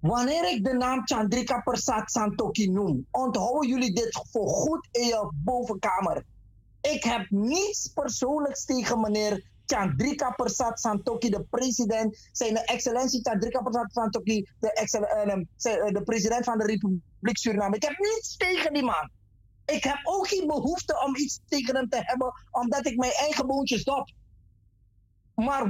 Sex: male